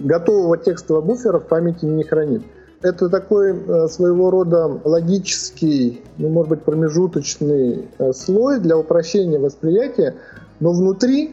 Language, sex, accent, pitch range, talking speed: Russian, male, native, 145-190 Hz, 115 wpm